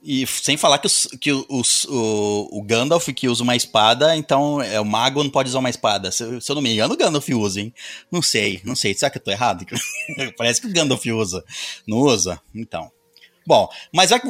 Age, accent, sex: 30-49, Brazilian, male